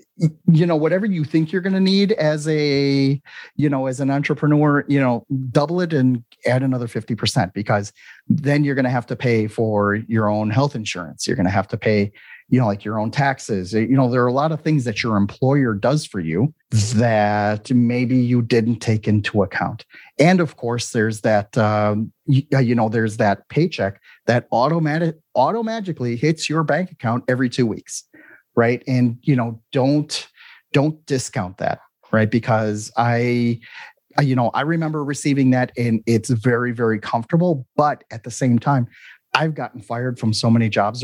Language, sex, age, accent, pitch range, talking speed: English, male, 40-59, American, 110-145 Hz, 185 wpm